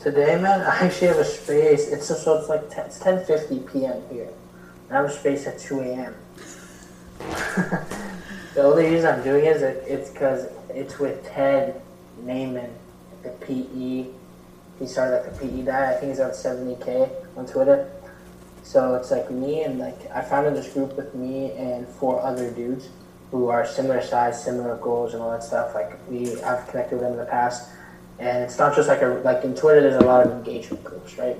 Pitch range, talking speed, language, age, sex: 120-135 Hz, 195 wpm, English, 20-39, male